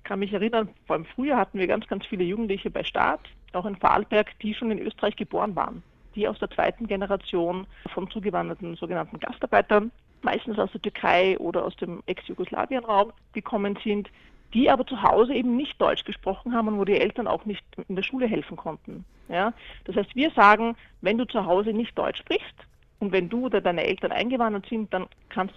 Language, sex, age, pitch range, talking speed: German, female, 40-59, 185-225 Hz, 200 wpm